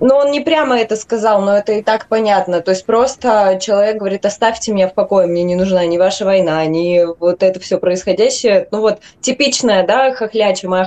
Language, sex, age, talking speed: Russian, female, 20-39, 205 wpm